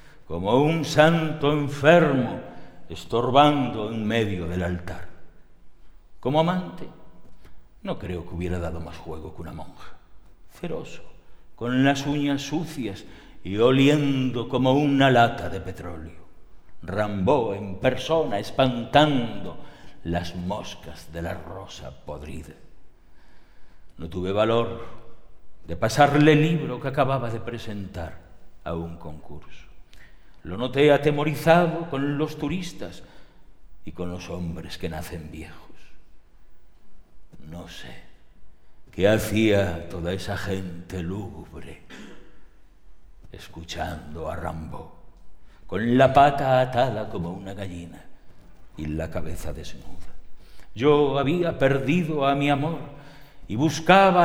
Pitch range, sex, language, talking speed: 85-140 Hz, male, Spanish, 110 wpm